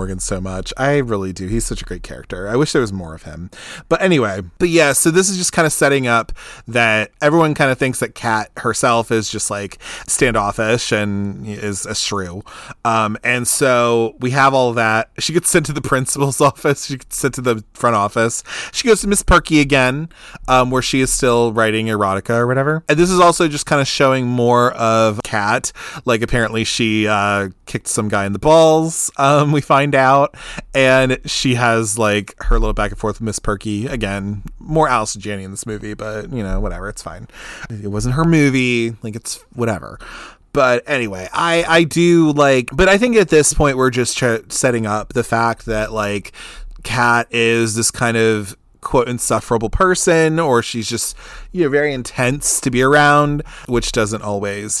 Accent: American